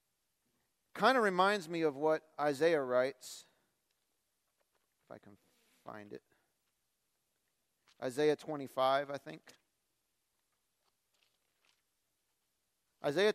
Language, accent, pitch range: English, American, 135-185 Hz